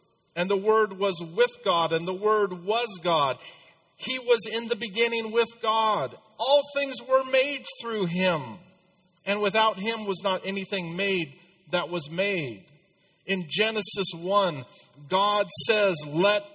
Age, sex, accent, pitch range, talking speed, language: 50-69, male, American, 165-200 Hz, 145 wpm, English